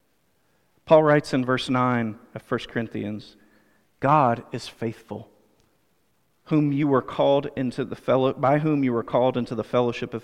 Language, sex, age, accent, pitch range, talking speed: English, male, 40-59, American, 120-165 Hz, 160 wpm